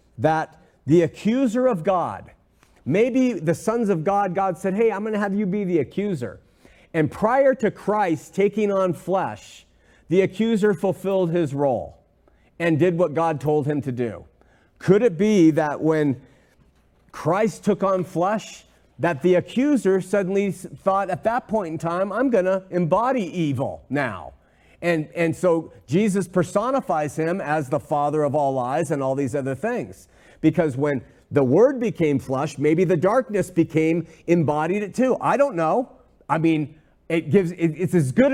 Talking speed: 165 wpm